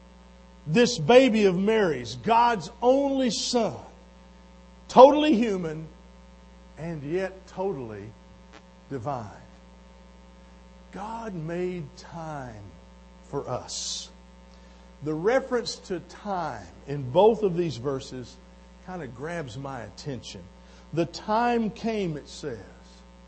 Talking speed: 95 wpm